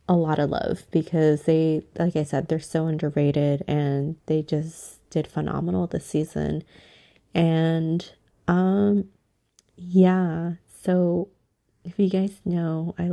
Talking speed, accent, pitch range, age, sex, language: 130 wpm, American, 150-175 Hz, 20-39, female, English